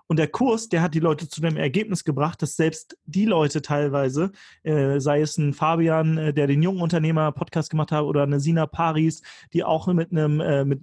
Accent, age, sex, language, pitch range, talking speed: German, 30-49, male, German, 150-175 Hz, 215 wpm